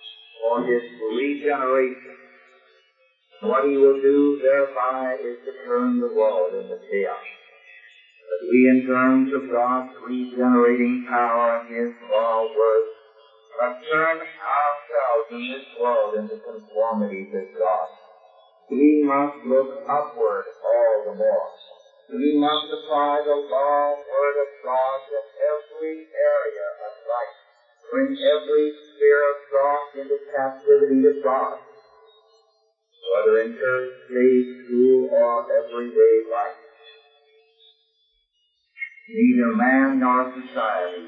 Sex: male